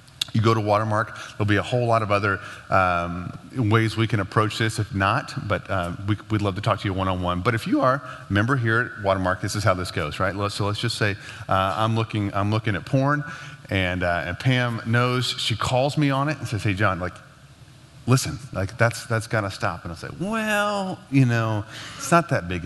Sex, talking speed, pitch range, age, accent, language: male, 230 wpm, 100-130 Hz, 30-49, American, English